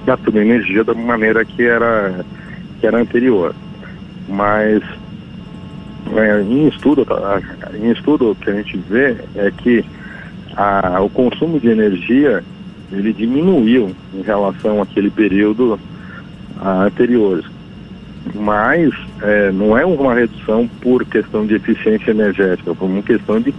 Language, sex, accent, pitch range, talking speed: Portuguese, male, Brazilian, 95-115 Hz, 120 wpm